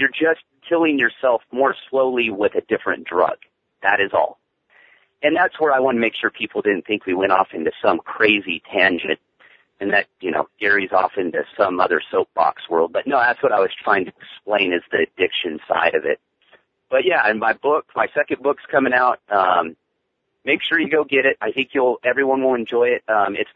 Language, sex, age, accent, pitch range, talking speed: English, male, 40-59, American, 115-155 Hz, 210 wpm